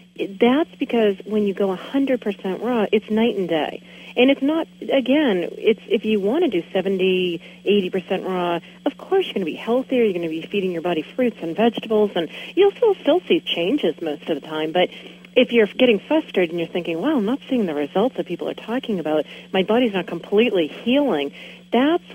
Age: 40-59